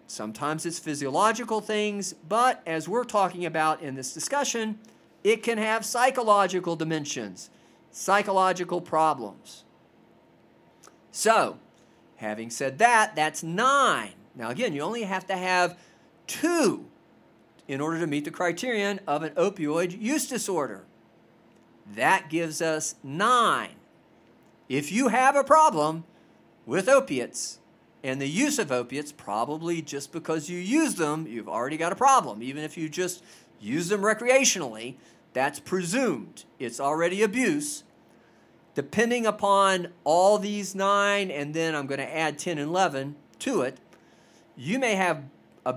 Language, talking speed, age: English, 135 wpm, 50-69